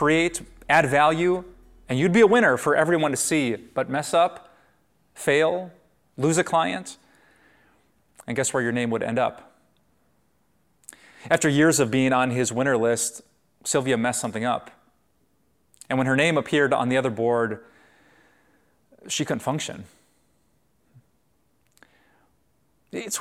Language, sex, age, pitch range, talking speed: English, male, 30-49, 120-155 Hz, 135 wpm